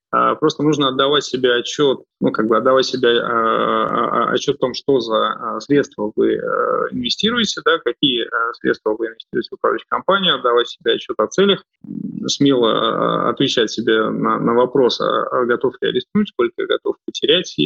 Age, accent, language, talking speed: 20-39, native, Russian, 155 wpm